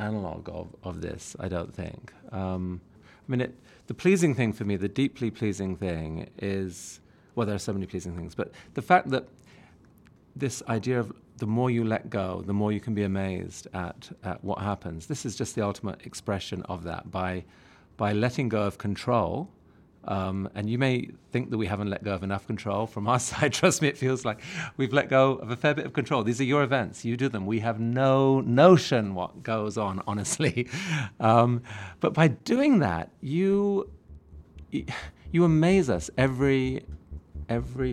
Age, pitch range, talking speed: 40-59, 95-125 Hz, 190 wpm